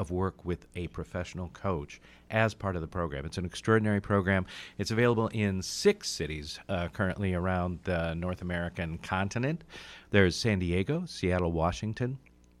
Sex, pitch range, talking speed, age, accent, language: male, 85-110 Hz, 150 wpm, 40-59, American, English